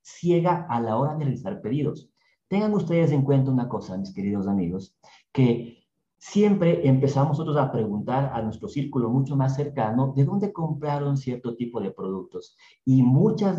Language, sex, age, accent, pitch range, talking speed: Spanish, male, 40-59, Mexican, 120-155 Hz, 165 wpm